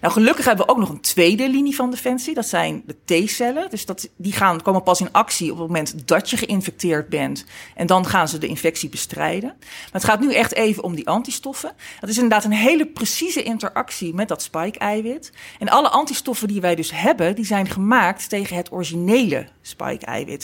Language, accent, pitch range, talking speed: Dutch, Dutch, 185-255 Hz, 205 wpm